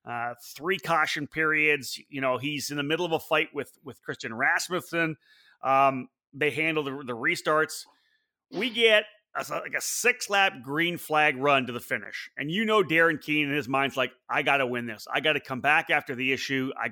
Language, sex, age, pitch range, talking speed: English, male, 30-49, 140-165 Hz, 200 wpm